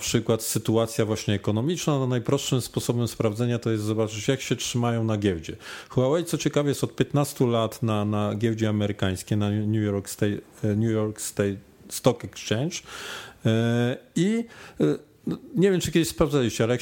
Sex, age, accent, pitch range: male, 40-59, native, 105-140 Hz